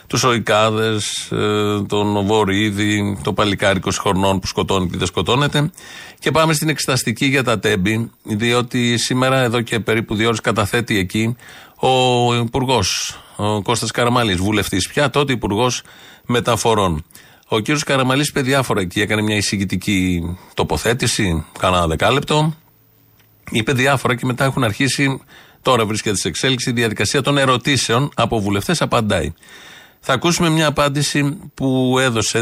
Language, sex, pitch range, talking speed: Greek, male, 105-135 Hz, 135 wpm